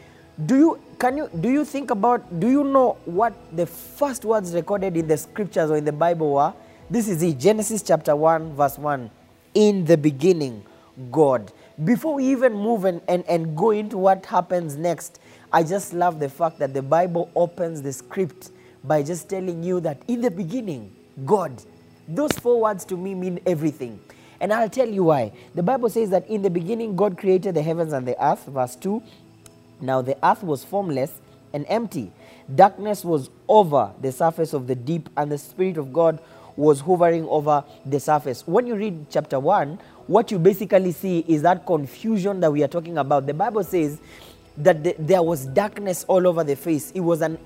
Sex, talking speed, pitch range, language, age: male, 195 wpm, 150-200 Hz, English, 20-39